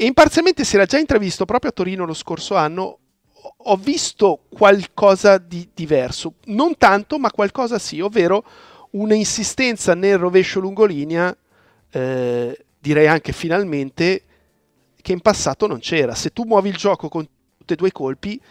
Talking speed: 150 wpm